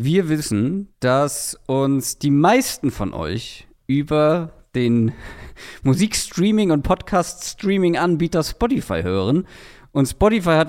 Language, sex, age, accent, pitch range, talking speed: German, male, 40-59, German, 120-170 Hz, 100 wpm